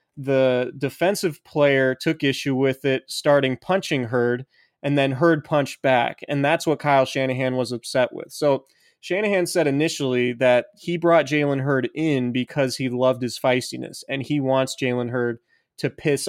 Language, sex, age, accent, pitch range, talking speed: English, male, 20-39, American, 125-150 Hz, 165 wpm